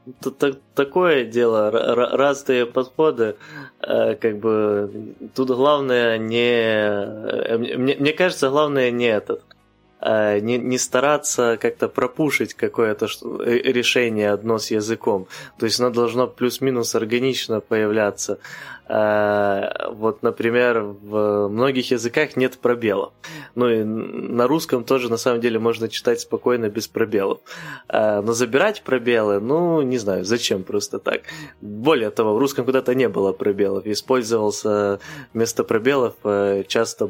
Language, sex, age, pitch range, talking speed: Ukrainian, male, 20-39, 105-130 Hz, 115 wpm